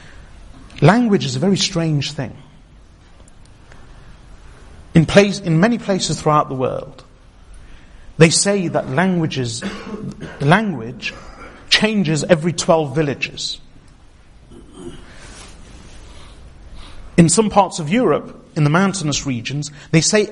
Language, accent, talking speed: English, British, 100 wpm